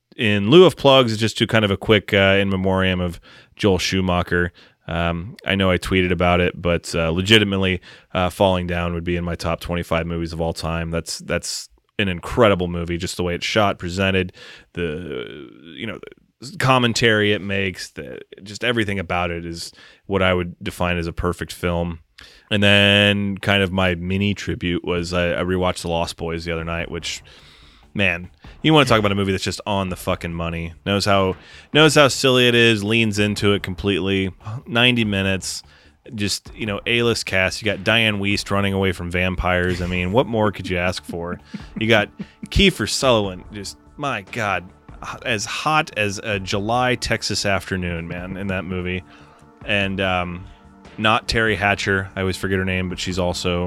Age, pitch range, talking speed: 30-49, 85-100 Hz, 190 wpm